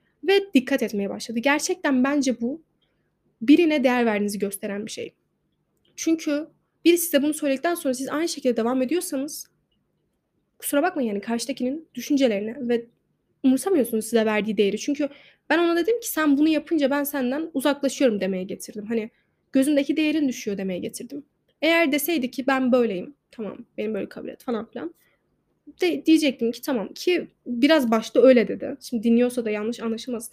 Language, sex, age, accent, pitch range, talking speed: Turkish, female, 10-29, native, 230-300 Hz, 150 wpm